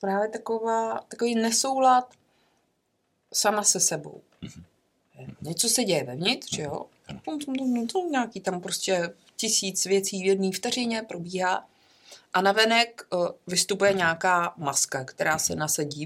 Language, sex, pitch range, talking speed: Czech, female, 160-215 Hz, 110 wpm